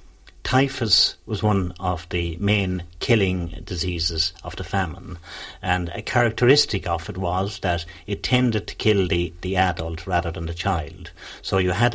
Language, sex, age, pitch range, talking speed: English, male, 60-79, 85-100 Hz, 160 wpm